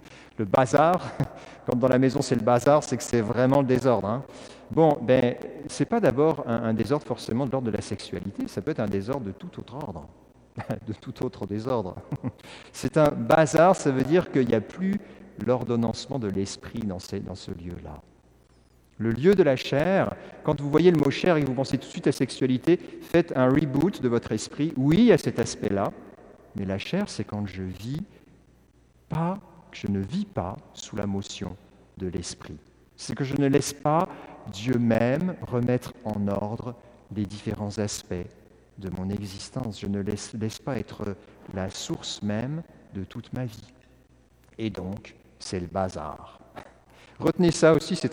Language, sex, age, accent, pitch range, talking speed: French, male, 50-69, French, 105-145 Hz, 180 wpm